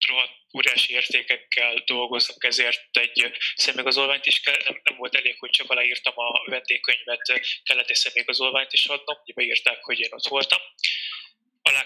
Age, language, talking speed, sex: 20-39, Hungarian, 145 wpm, male